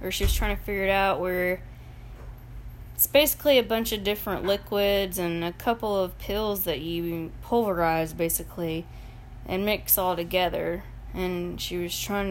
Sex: female